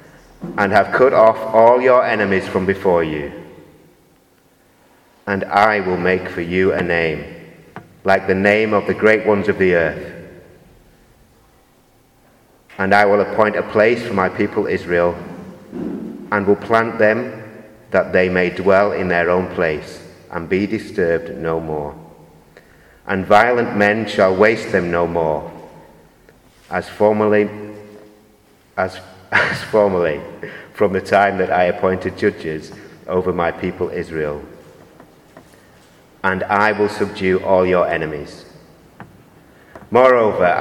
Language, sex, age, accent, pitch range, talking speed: English, male, 30-49, British, 90-105 Hz, 130 wpm